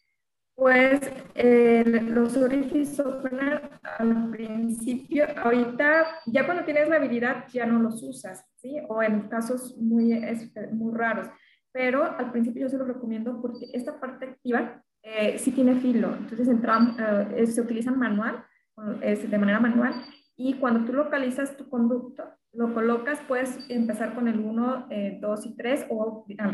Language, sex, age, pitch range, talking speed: Spanish, female, 20-39, 225-260 Hz, 150 wpm